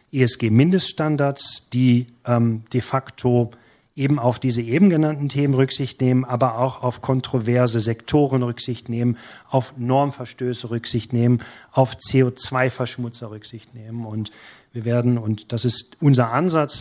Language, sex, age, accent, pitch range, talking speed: German, male, 40-59, German, 115-135 Hz, 130 wpm